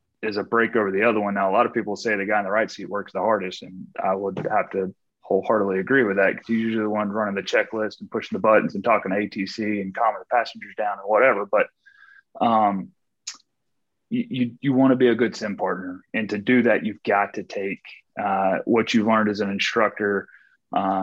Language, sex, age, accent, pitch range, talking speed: English, male, 30-49, American, 100-115 Hz, 235 wpm